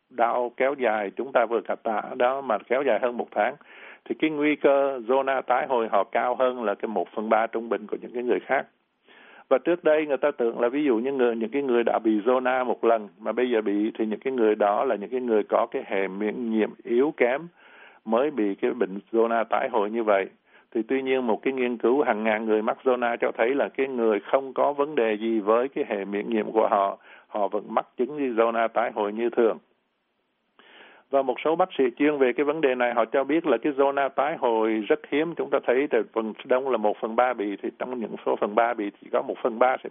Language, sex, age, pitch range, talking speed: Vietnamese, male, 60-79, 110-135 Hz, 255 wpm